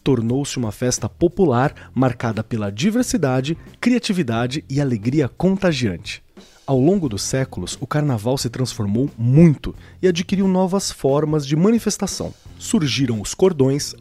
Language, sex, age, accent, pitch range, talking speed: Portuguese, male, 30-49, Brazilian, 120-170 Hz, 125 wpm